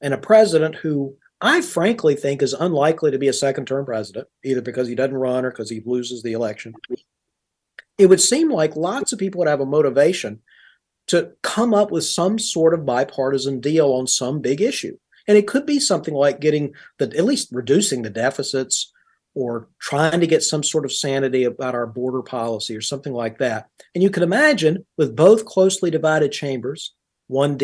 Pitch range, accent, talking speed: 130-170 Hz, American, 190 wpm